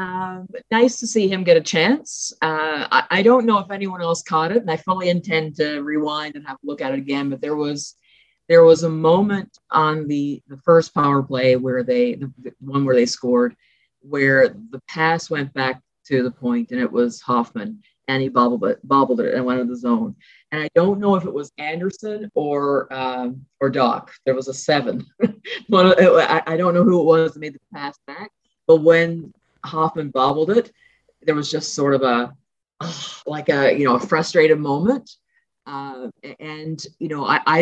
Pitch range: 135-175 Hz